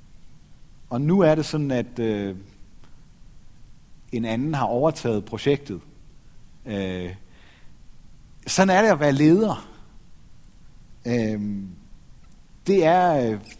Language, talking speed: Danish, 80 wpm